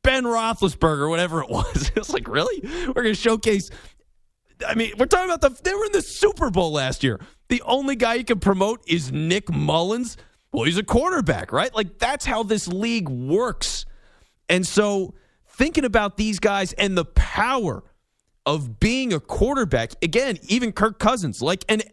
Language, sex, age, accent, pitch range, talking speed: English, male, 40-59, American, 150-230 Hz, 180 wpm